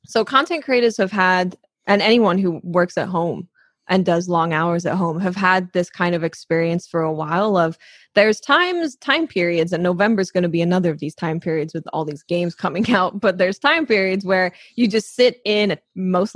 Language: English